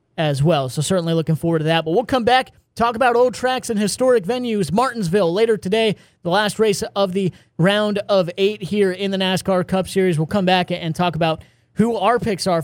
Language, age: English, 20-39